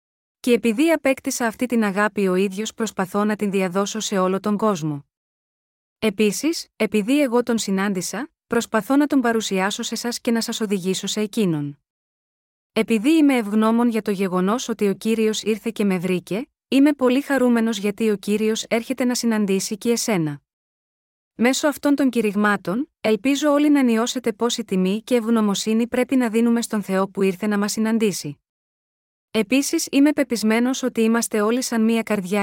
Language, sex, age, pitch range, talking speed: Greek, female, 30-49, 200-245 Hz, 165 wpm